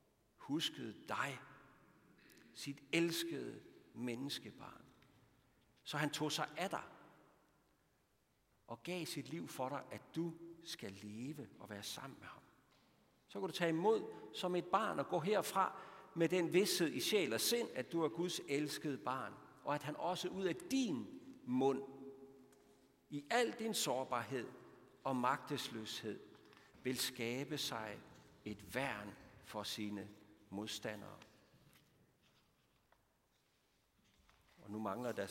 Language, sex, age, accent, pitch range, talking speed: Danish, male, 60-79, native, 115-165 Hz, 125 wpm